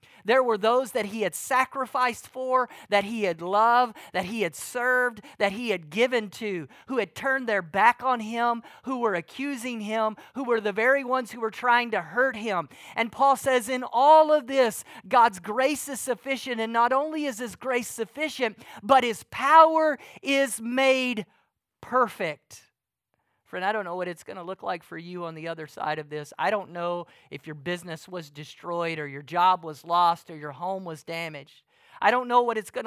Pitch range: 165-245 Hz